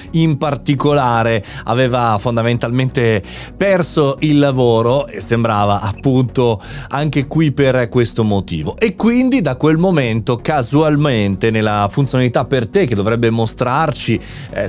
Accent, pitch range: native, 110-145 Hz